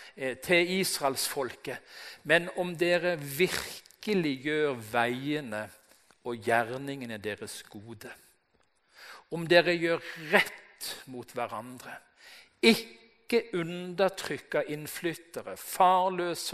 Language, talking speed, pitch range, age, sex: Danish, 85 wpm, 130-185 Hz, 50-69, male